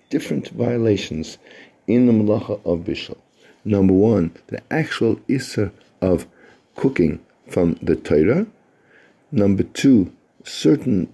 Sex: male